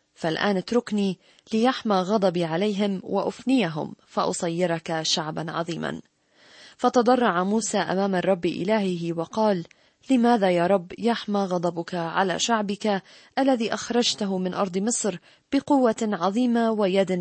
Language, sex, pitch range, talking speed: Arabic, female, 180-230 Hz, 105 wpm